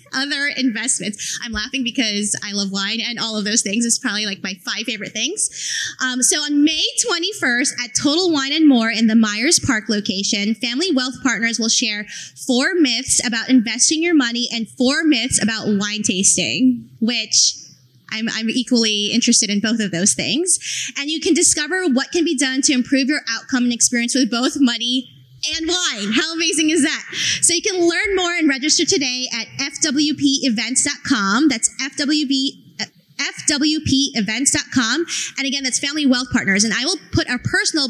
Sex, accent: female, American